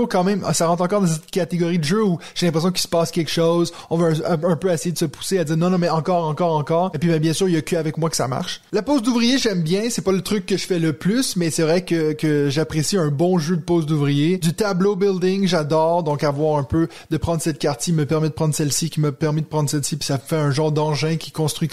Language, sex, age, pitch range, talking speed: French, male, 20-39, 155-190 Hz, 295 wpm